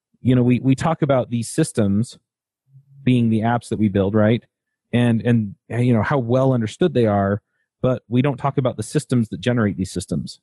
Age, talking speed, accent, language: 30-49, 200 wpm, American, English